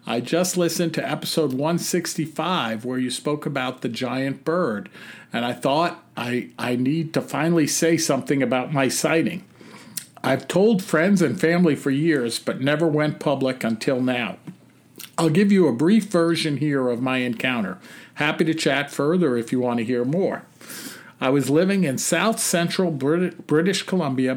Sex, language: male, English